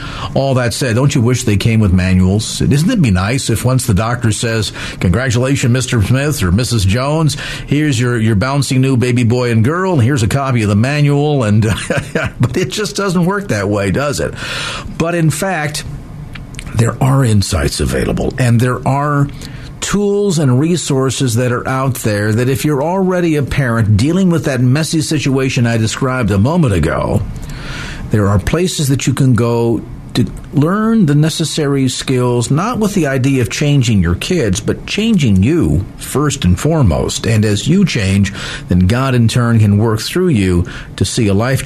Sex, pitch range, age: male, 105-140 Hz, 50-69